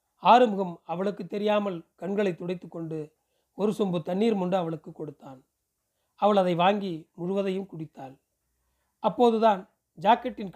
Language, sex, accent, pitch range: Tamil, male, native, 165-205 Hz